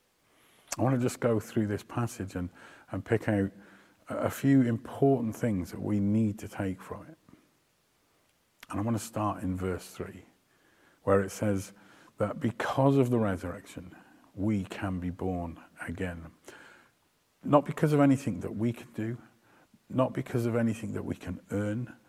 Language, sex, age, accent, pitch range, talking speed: English, male, 40-59, British, 95-120 Hz, 165 wpm